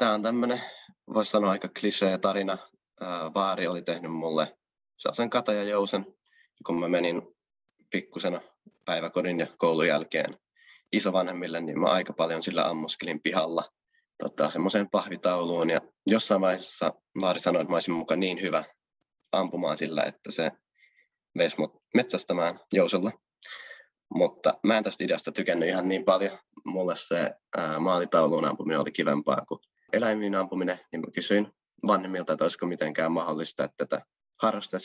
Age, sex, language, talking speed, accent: 20-39, male, Finnish, 140 wpm, native